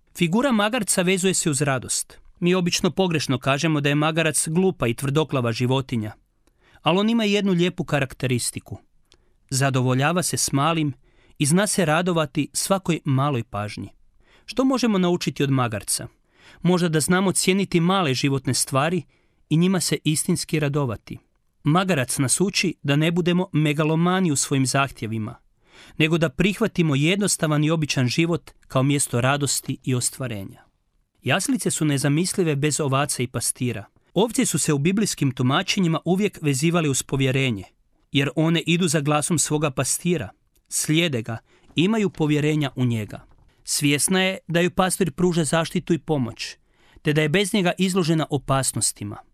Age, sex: 40-59, male